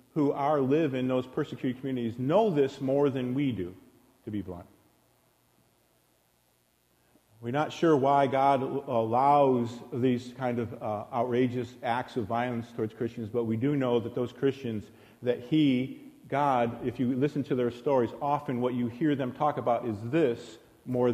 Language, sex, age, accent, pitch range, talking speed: English, male, 50-69, American, 110-140 Hz, 165 wpm